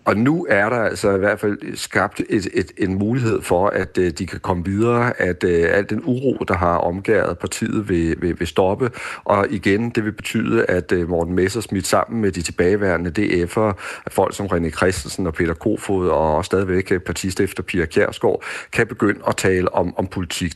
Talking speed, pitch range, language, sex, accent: 190 wpm, 85-105 Hz, Danish, male, native